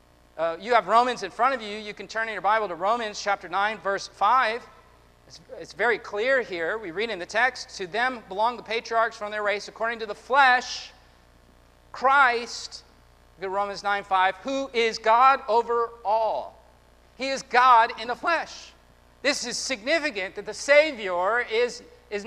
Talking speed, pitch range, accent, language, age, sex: 175 wpm, 200-255 Hz, American, English, 40-59, male